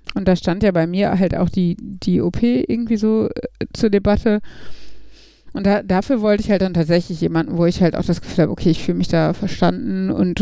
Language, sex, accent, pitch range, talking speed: German, female, German, 175-220 Hz, 225 wpm